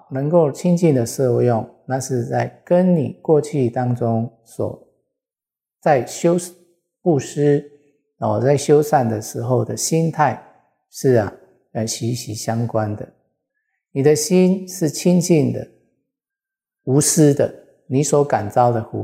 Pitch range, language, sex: 115-150 Hz, Chinese, male